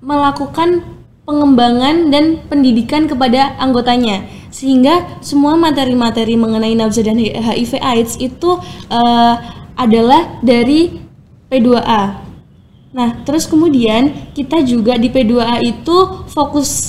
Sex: female